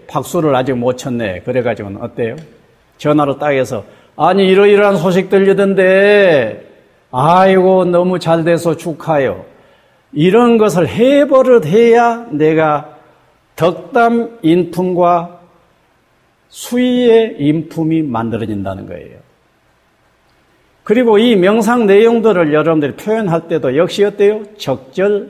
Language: Korean